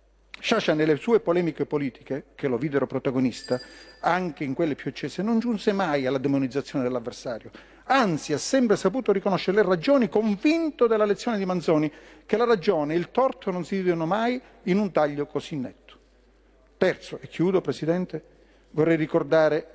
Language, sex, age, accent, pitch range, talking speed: Italian, male, 40-59, native, 155-205 Hz, 160 wpm